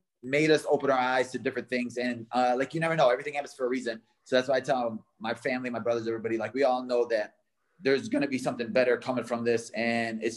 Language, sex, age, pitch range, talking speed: English, male, 20-39, 115-130 Hz, 260 wpm